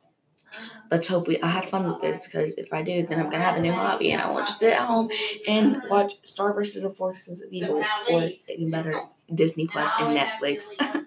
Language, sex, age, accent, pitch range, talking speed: English, female, 20-39, American, 170-225 Hz, 220 wpm